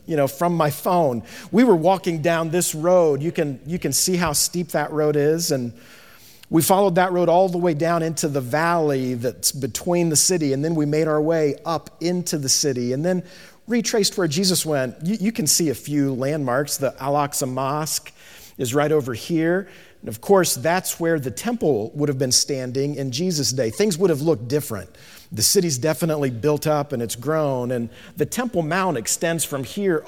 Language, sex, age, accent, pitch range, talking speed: English, male, 40-59, American, 140-180 Hz, 200 wpm